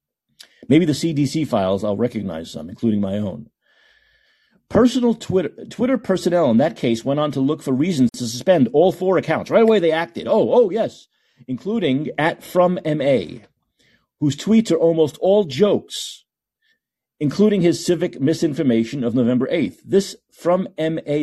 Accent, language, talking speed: American, English, 150 wpm